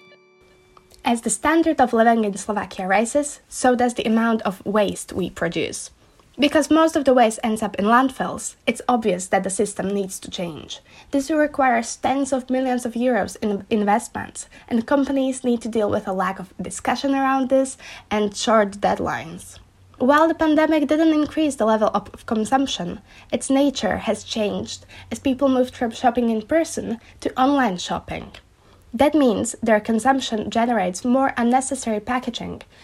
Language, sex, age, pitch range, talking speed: Slovak, female, 10-29, 210-265 Hz, 160 wpm